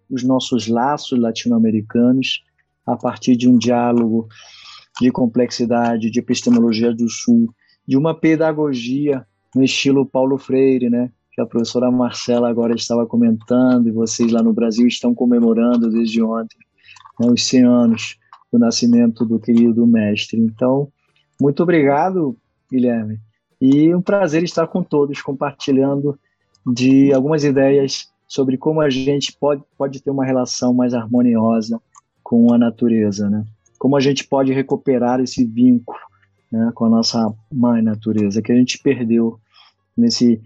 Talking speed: 140 wpm